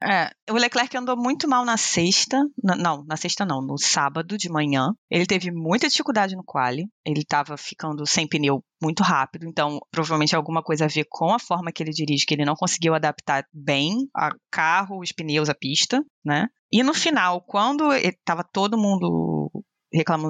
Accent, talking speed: Brazilian, 185 wpm